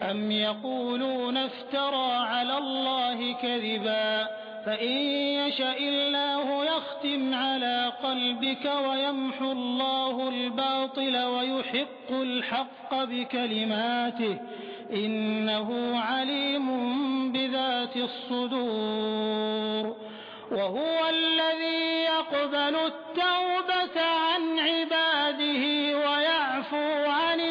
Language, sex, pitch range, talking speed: Hindi, male, 245-290 Hz, 65 wpm